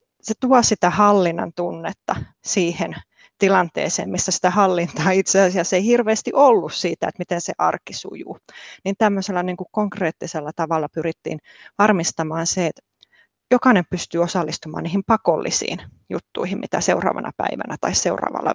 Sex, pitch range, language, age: female, 170-205 Hz, Finnish, 30-49